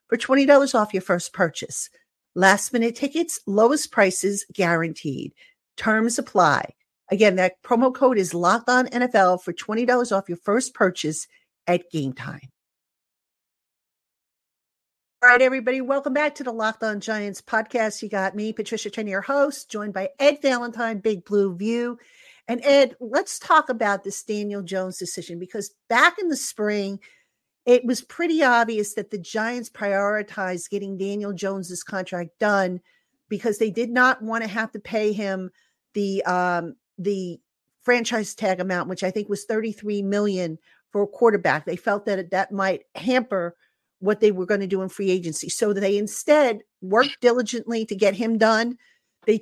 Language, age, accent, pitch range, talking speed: English, 50-69, American, 195-240 Hz, 165 wpm